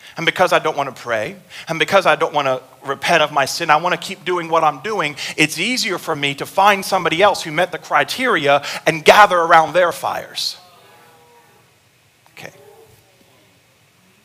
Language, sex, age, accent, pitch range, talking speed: English, male, 40-59, American, 130-180 Hz, 180 wpm